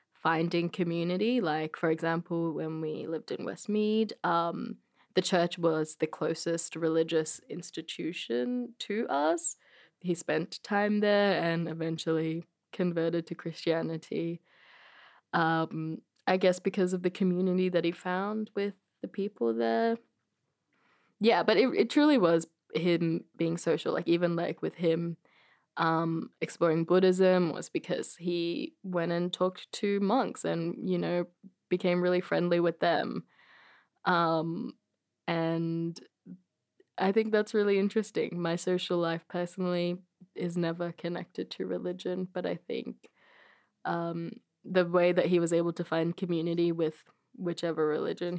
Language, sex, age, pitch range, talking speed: English, female, 20-39, 165-195 Hz, 135 wpm